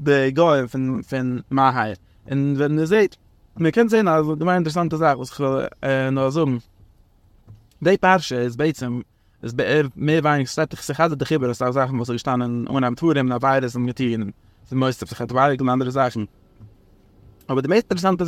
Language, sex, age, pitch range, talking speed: English, male, 20-39, 130-180 Hz, 55 wpm